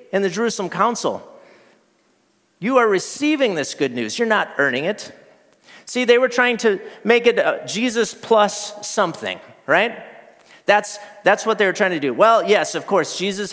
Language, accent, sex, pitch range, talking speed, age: English, American, male, 180-225 Hz, 170 wpm, 40-59